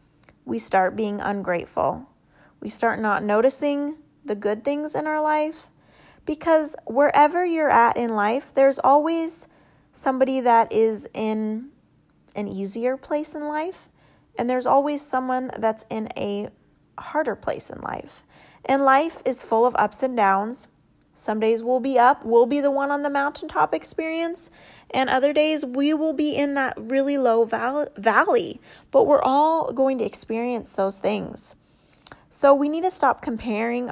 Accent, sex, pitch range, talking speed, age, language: American, female, 230-295 Hz, 155 wpm, 30-49, English